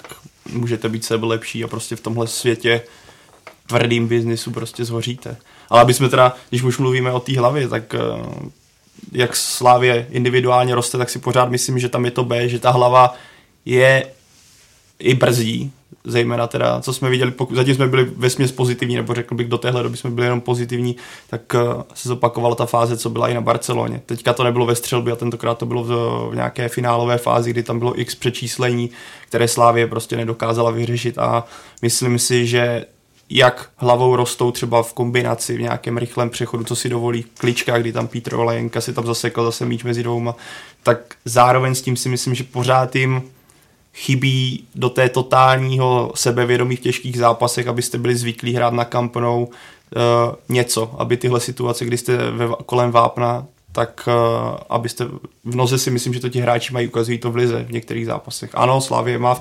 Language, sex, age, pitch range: Czech, male, 20-39, 120-125 Hz